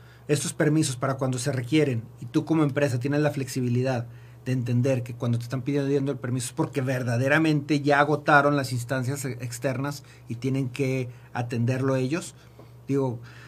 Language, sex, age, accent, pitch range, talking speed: Spanish, male, 40-59, Mexican, 120-145 Hz, 160 wpm